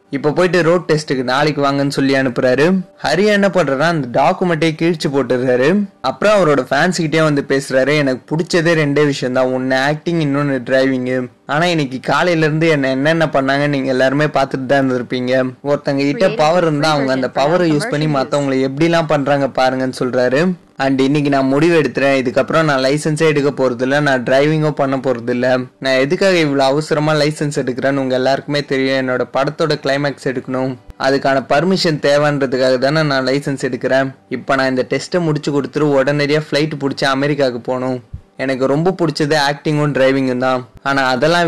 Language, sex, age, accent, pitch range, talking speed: Tamil, male, 20-39, native, 130-150 Hz, 160 wpm